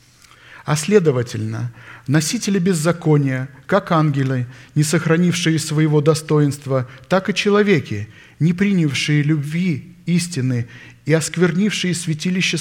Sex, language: male, Russian